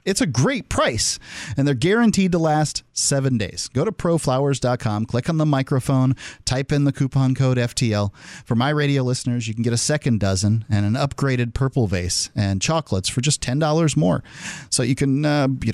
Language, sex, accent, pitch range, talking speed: English, male, American, 115-150 Hz, 190 wpm